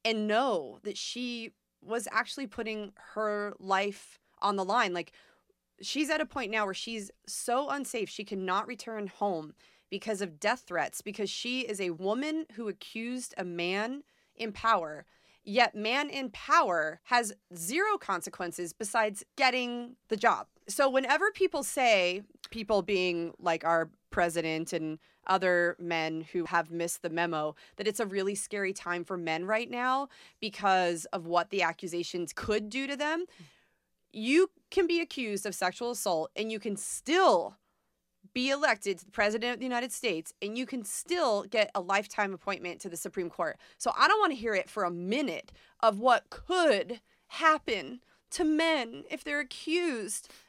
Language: English